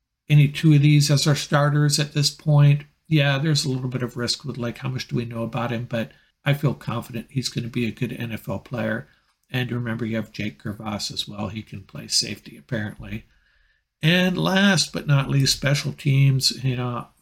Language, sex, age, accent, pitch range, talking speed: English, male, 50-69, American, 115-135 Hz, 210 wpm